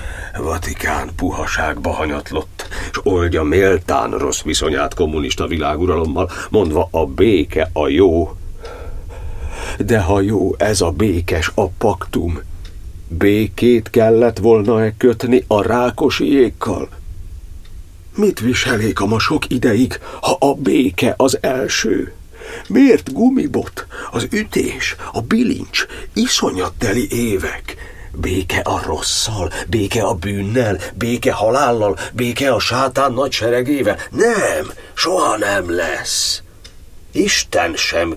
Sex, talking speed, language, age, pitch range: male, 105 wpm, Hungarian, 60-79, 85-125 Hz